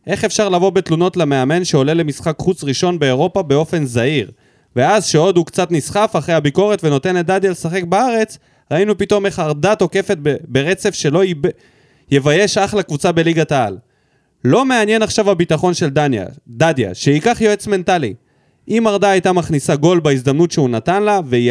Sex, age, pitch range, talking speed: male, 20-39, 145-205 Hz, 160 wpm